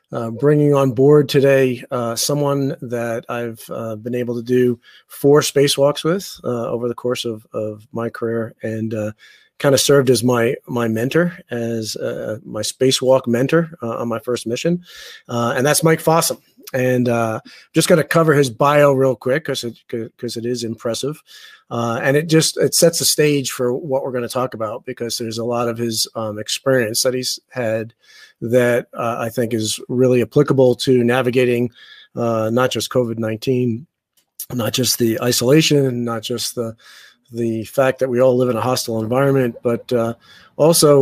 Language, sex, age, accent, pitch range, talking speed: English, male, 40-59, American, 115-140 Hz, 180 wpm